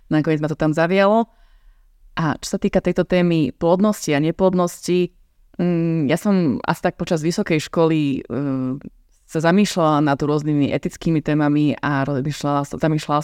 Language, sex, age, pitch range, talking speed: Slovak, female, 20-39, 150-180 Hz, 145 wpm